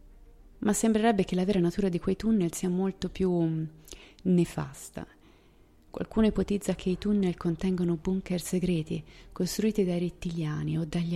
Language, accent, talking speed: Italian, native, 140 wpm